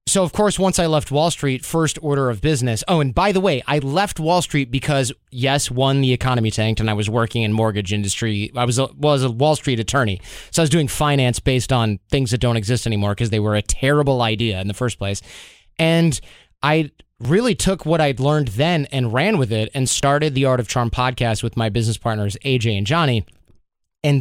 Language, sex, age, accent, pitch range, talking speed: English, male, 30-49, American, 115-150 Hz, 225 wpm